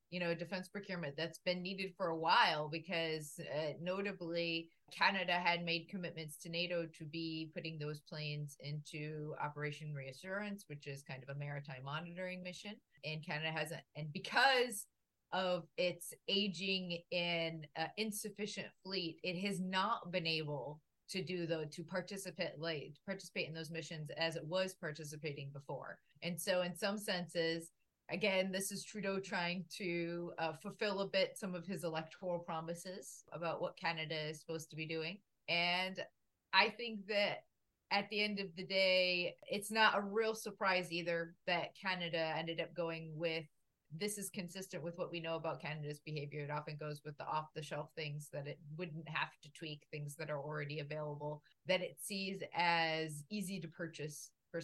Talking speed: 170 wpm